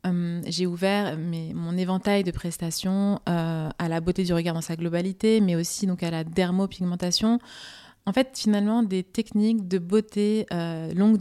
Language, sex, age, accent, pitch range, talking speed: French, female, 20-39, French, 175-205 Hz, 170 wpm